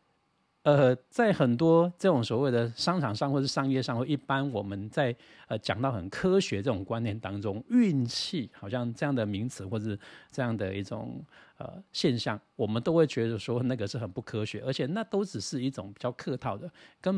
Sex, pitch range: male, 110-150 Hz